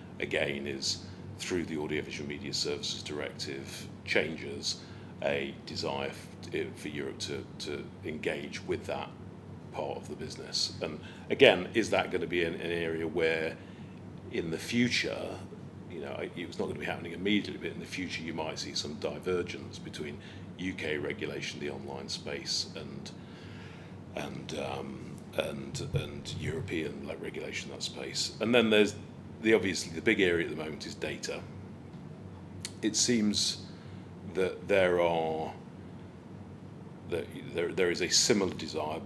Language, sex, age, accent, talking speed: English, male, 40-59, British, 145 wpm